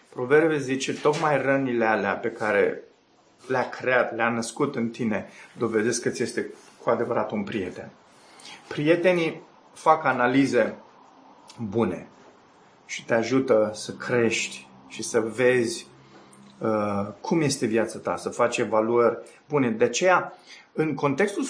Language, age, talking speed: Romanian, 30-49, 125 wpm